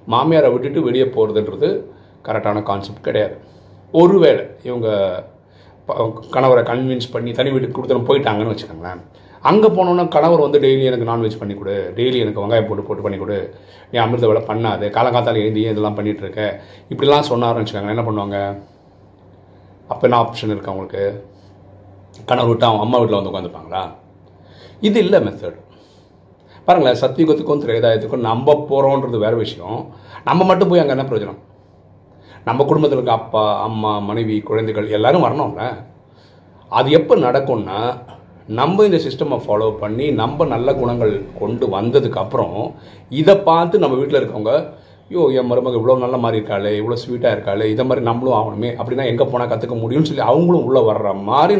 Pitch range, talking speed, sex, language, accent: 100-130 Hz, 145 wpm, male, Tamil, native